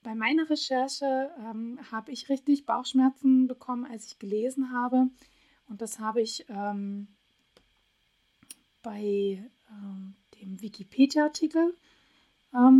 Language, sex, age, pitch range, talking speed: German, female, 20-39, 210-260 Hz, 105 wpm